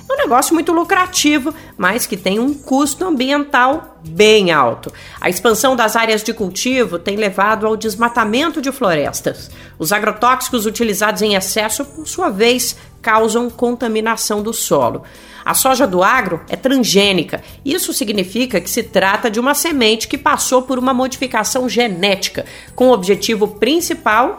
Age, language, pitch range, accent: 40-59, Portuguese, 200-275 Hz, Brazilian